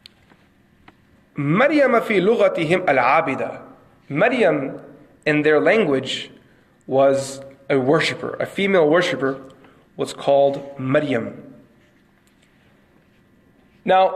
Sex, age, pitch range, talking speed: male, 30-49, 140-185 Hz, 65 wpm